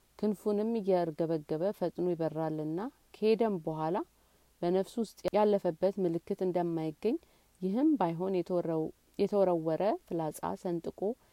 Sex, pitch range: female, 155-195 Hz